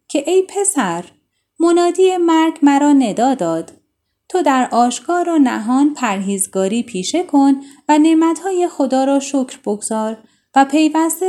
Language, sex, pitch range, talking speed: Persian, female, 230-325 Hz, 130 wpm